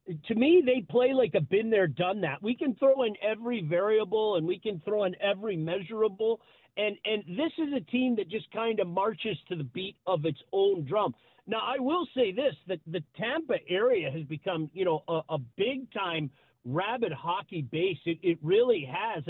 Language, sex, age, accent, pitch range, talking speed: English, male, 40-59, American, 175-240 Hz, 200 wpm